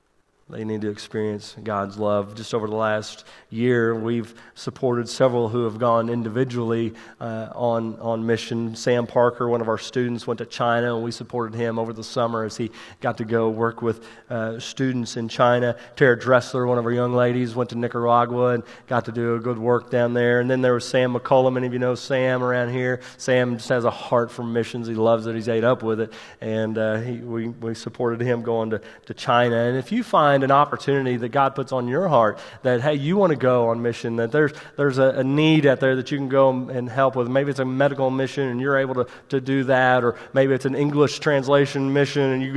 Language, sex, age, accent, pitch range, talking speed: English, male, 30-49, American, 115-135 Hz, 225 wpm